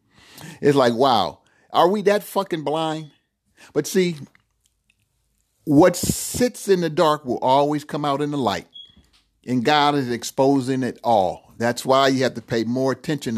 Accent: American